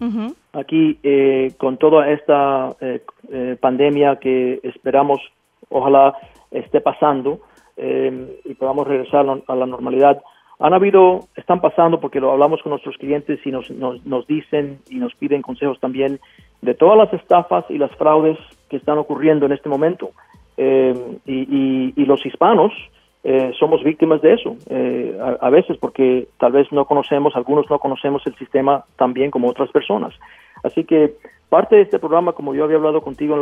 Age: 40-59